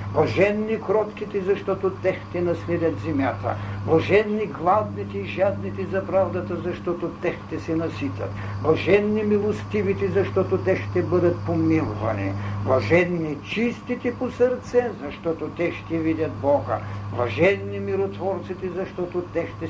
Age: 60-79